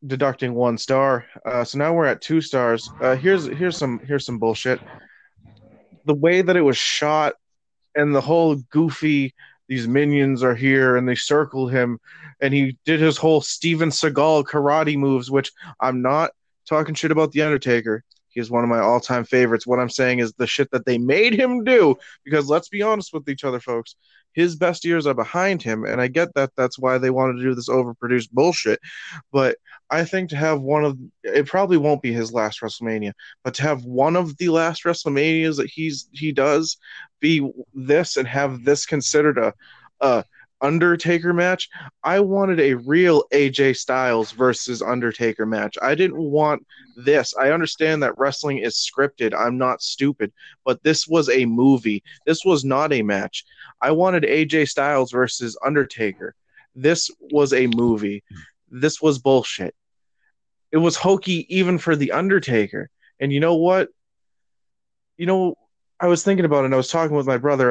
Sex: male